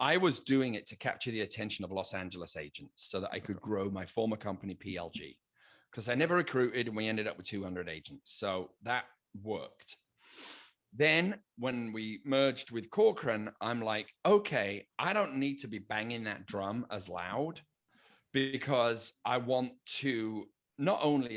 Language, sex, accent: English, male, British